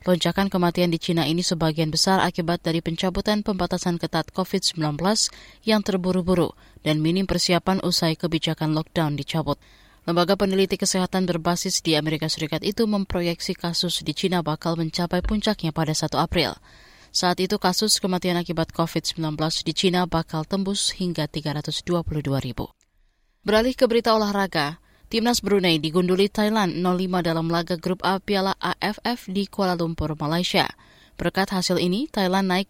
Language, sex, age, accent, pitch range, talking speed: Indonesian, female, 20-39, native, 160-190 Hz, 140 wpm